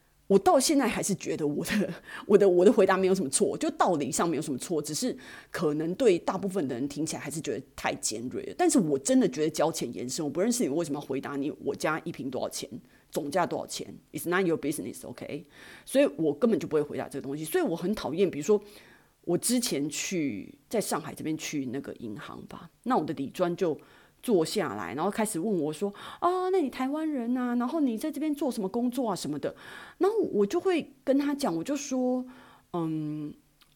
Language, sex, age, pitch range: Chinese, female, 30-49, 155-260 Hz